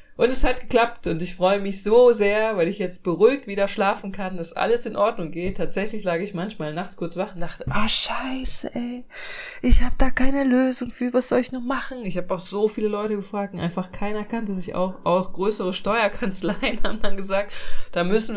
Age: 20-39